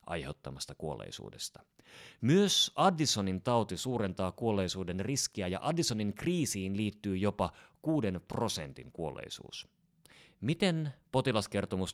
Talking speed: 90 wpm